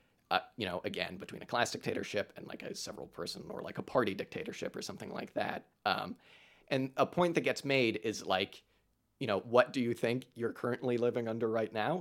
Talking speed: 210 wpm